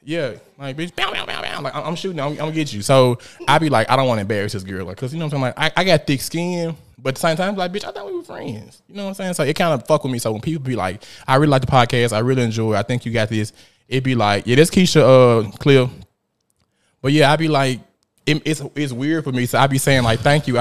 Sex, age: male, 20-39